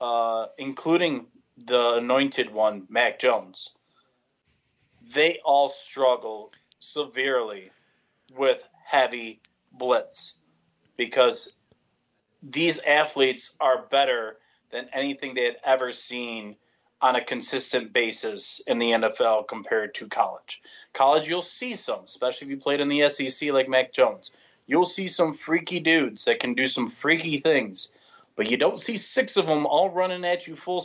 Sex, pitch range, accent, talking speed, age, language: male, 120-175 Hz, American, 140 wpm, 30-49, English